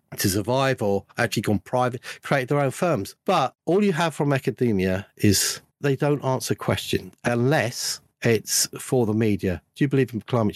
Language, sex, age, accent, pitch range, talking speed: English, male, 50-69, British, 105-140 Hz, 175 wpm